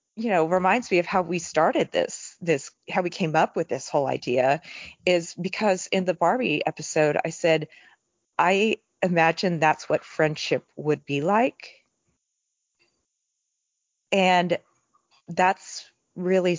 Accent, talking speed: American, 135 wpm